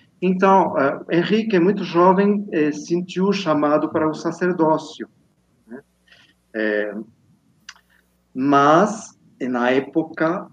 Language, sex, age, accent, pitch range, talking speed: Portuguese, male, 40-59, Brazilian, 135-175 Hz, 85 wpm